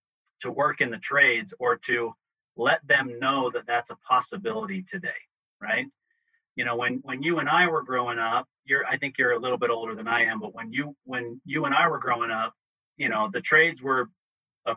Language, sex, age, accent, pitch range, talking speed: English, male, 30-49, American, 120-155 Hz, 215 wpm